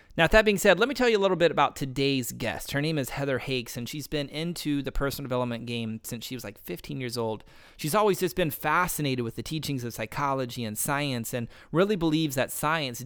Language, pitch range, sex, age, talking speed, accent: English, 120-155 Hz, male, 30-49, 235 wpm, American